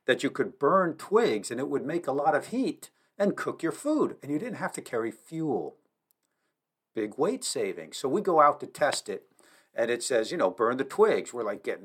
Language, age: English, 50-69